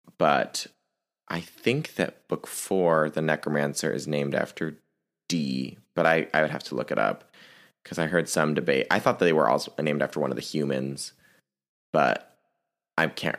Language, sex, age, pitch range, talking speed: English, male, 20-39, 75-90 Hz, 185 wpm